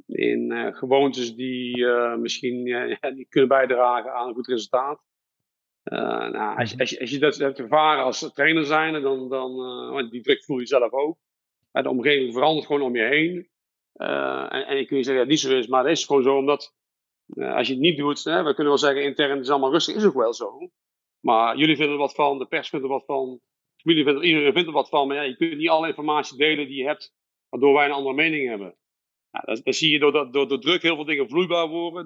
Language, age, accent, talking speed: Dutch, 50-69, Dutch, 250 wpm